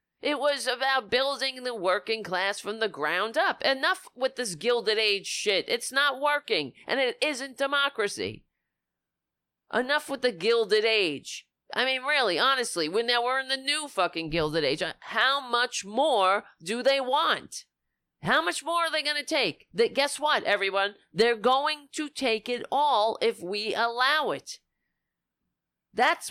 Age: 40-59